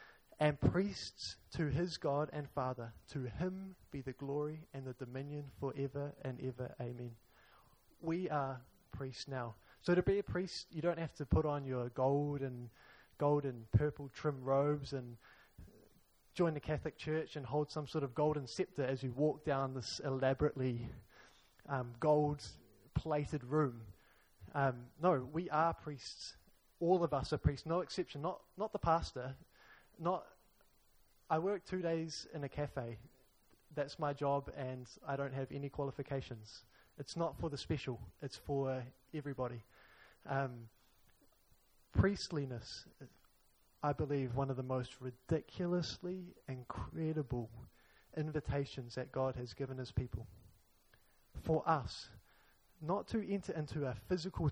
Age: 20-39